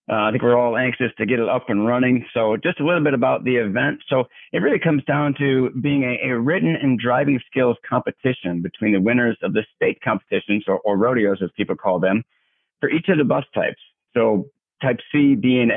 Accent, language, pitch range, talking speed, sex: American, English, 120-140 Hz, 225 wpm, male